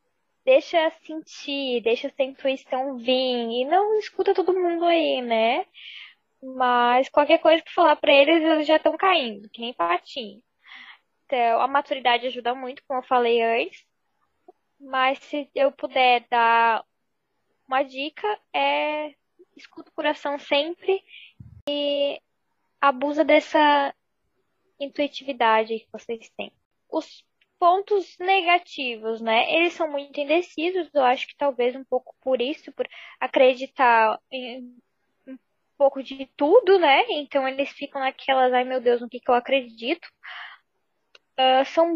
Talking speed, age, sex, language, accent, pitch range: 130 wpm, 10-29, female, Portuguese, Brazilian, 250-305 Hz